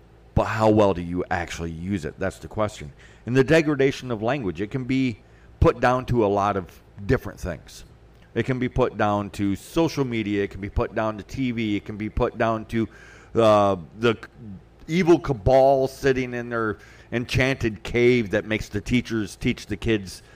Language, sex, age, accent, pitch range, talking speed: English, male, 40-59, American, 100-125 Hz, 190 wpm